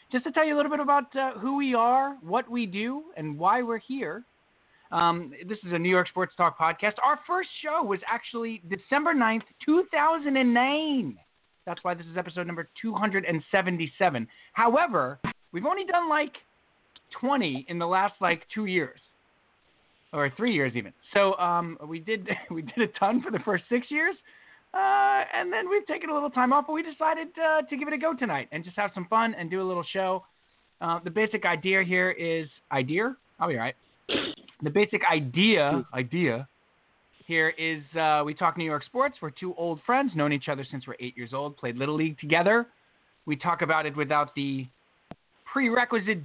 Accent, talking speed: American, 195 wpm